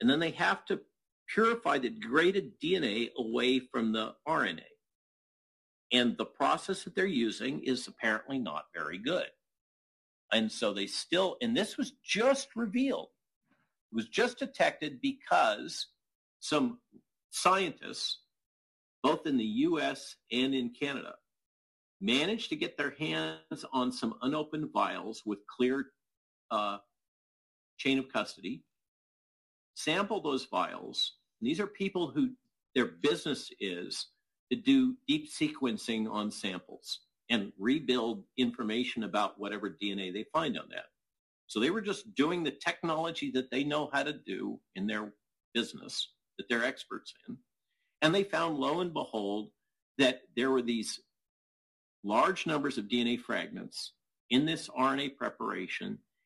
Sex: male